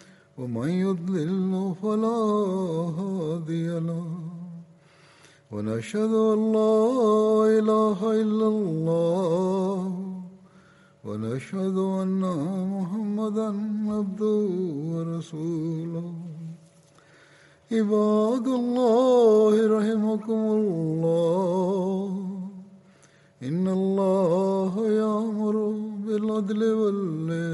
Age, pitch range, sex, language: 60-79, 165-215 Hz, male, Malayalam